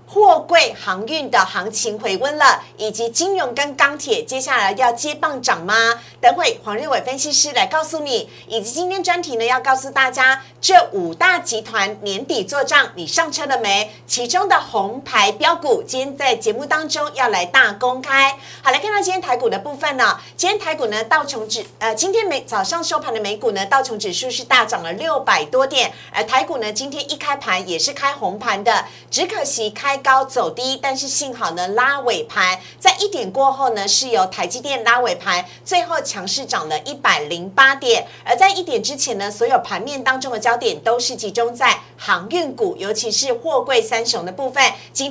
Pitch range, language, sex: 230-320 Hz, Chinese, female